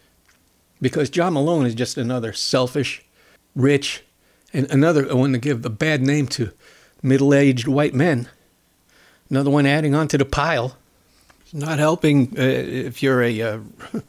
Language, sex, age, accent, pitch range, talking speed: English, male, 60-79, American, 125-145 Hz, 145 wpm